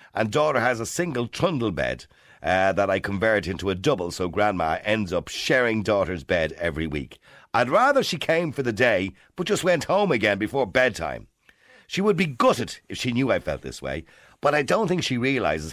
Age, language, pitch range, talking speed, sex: 50-69, English, 100-140 Hz, 205 wpm, male